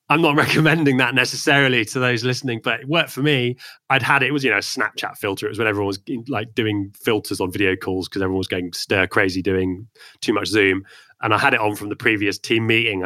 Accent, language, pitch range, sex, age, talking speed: British, English, 105-130 Hz, male, 20-39, 250 wpm